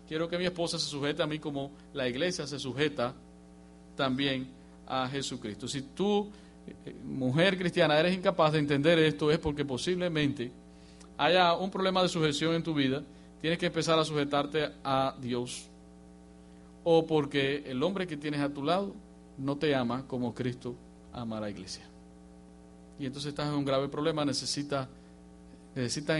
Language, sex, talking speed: English, male, 160 wpm